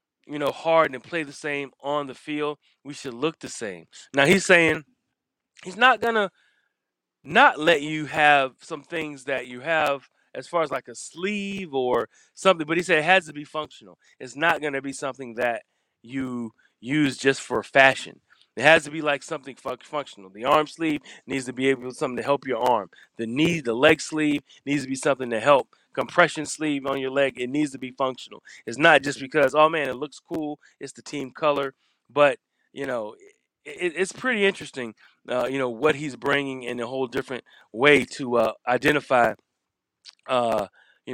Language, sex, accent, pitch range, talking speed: English, male, American, 130-155 Hz, 195 wpm